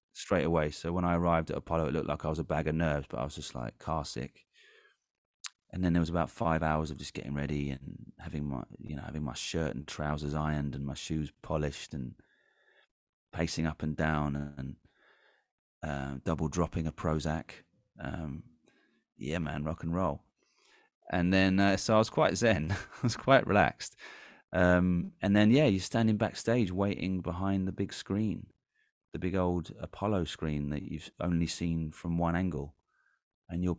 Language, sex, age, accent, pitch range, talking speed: English, male, 30-49, British, 75-90 Hz, 185 wpm